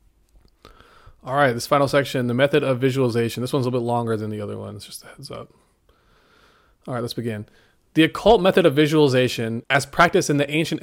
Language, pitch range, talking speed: English, 120-145 Hz, 205 wpm